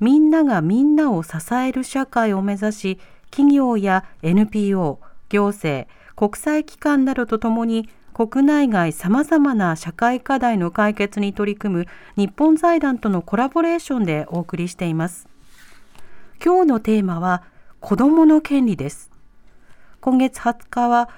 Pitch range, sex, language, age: 195-270 Hz, female, Japanese, 40-59